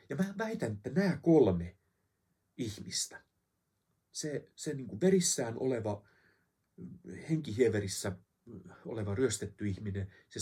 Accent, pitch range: native, 95-145 Hz